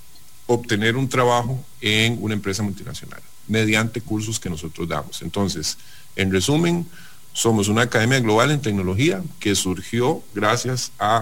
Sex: male